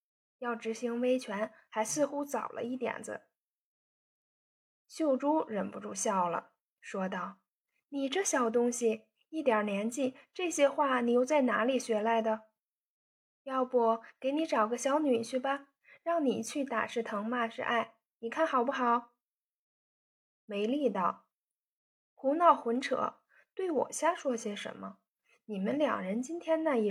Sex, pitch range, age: female, 220-290 Hz, 10-29